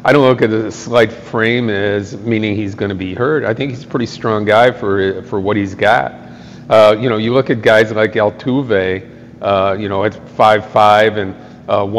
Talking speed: 215 wpm